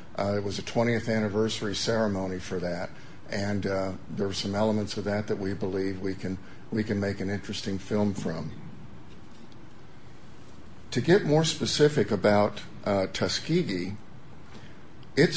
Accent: American